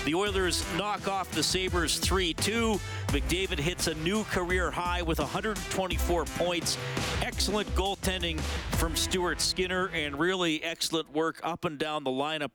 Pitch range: 125-155 Hz